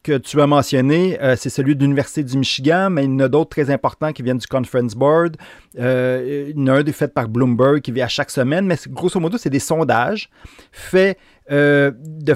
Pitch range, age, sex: 130-160 Hz, 30-49, male